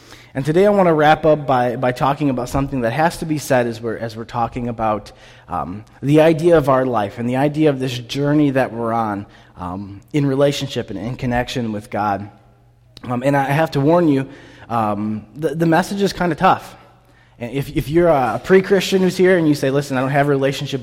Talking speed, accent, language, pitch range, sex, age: 220 wpm, American, English, 120-145 Hz, male, 20-39